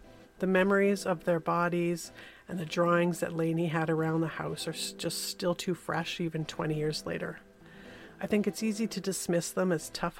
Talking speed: 190 wpm